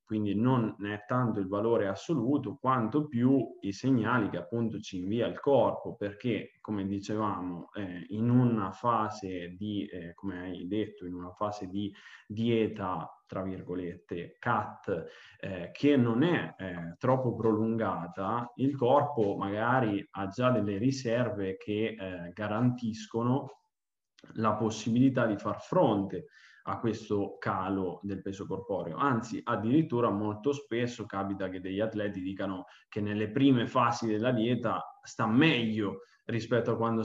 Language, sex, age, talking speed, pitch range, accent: Italian, male, 20-39, 140 wpm, 95-115 Hz, native